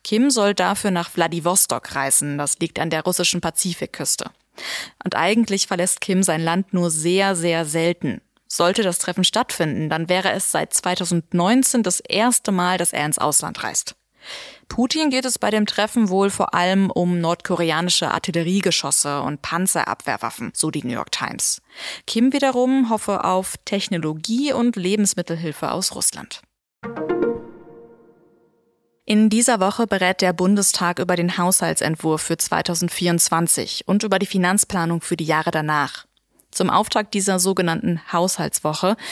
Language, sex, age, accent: German, female, 20-39, German